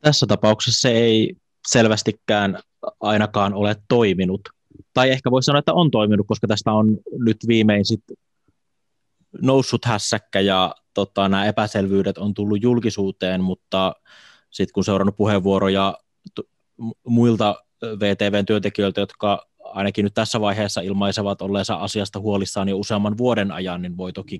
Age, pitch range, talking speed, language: 20-39, 95-110 Hz, 135 wpm, Finnish